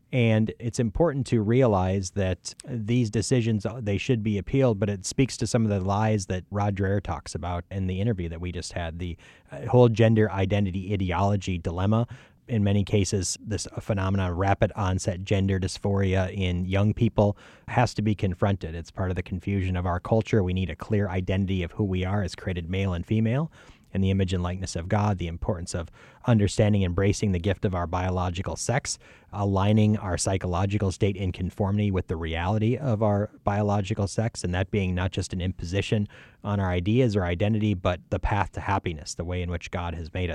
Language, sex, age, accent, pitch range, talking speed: English, male, 30-49, American, 90-110 Hz, 195 wpm